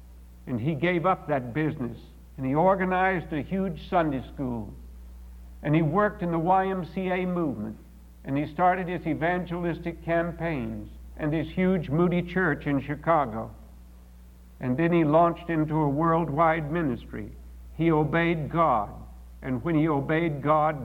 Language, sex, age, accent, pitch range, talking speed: English, male, 60-79, American, 115-180 Hz, 140 wpm